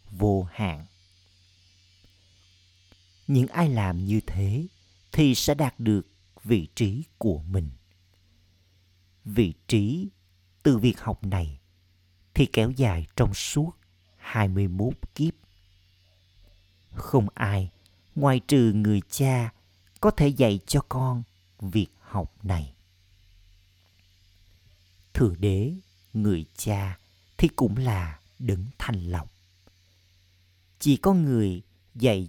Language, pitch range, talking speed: Vietnamese, 90-115 Hz, 105 wpm